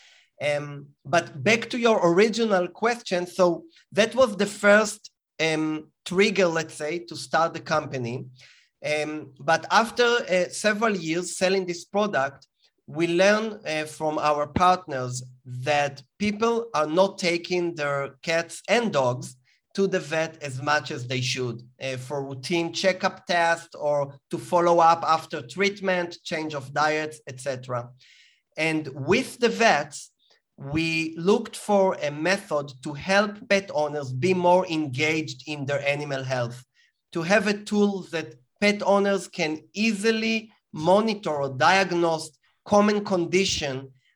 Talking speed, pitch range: 135 wpm, 145-190 Hz